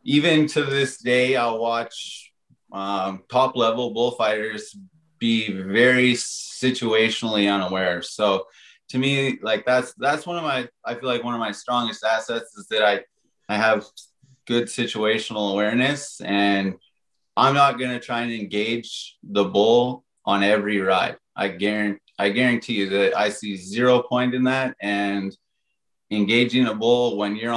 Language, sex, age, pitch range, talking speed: English, male, 30-49, 100-120 Hz, 150 wpm